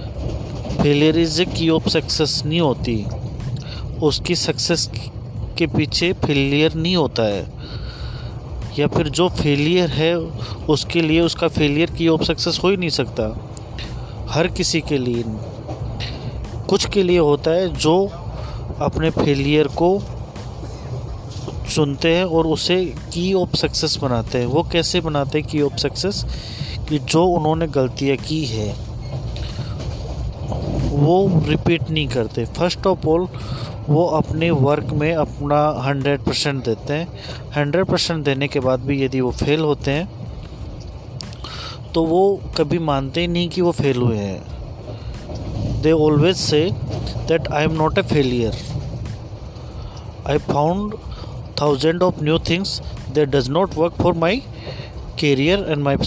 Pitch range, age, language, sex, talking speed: 120-165 Hz, 30-49, Hindi, male, 135 wpm